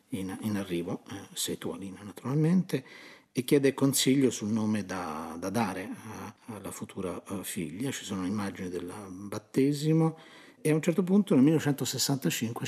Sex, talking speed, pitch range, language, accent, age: male, 150 wpm, 110-140 Hz, Italian, native, 50-69